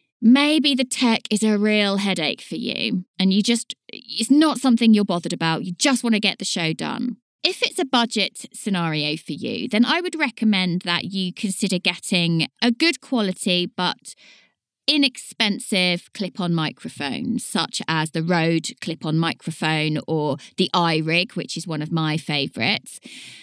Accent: British